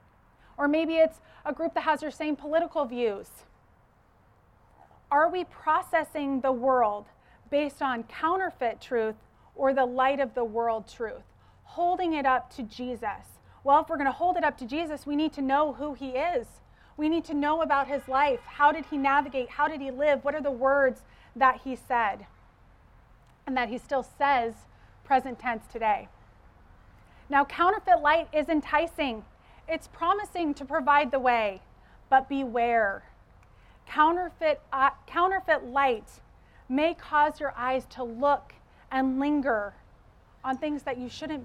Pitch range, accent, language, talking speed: 245-310 Hz, American, English, 160 wpm